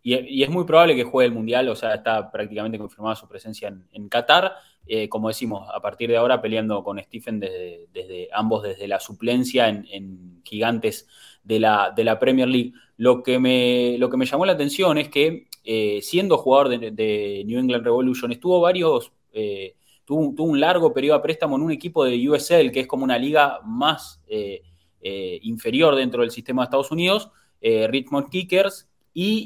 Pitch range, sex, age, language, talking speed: 115-160 Hz, male, 20-39, English, 195 wpm